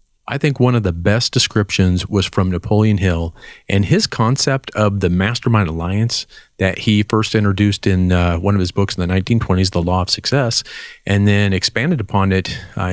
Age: 40-59